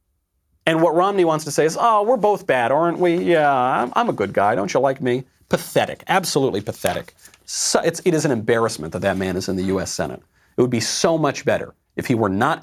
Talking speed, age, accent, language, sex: 230 wpm, 40-59, American, English, male